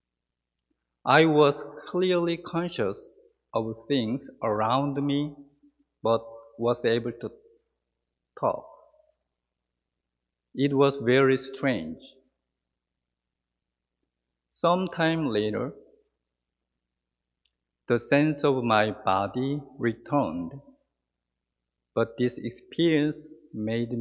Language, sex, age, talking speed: English, male, 50-69, 70 wpm